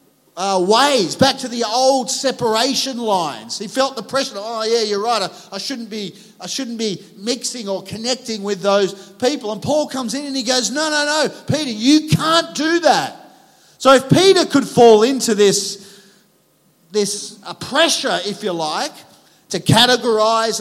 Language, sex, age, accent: English, male, 40-59, Australian